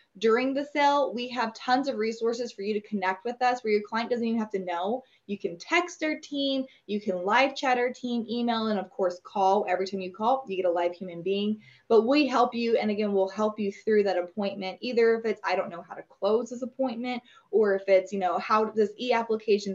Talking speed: 240 wpm